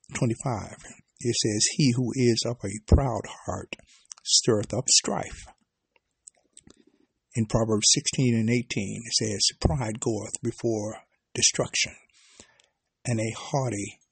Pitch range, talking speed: 110-140 Hz, 115 wpm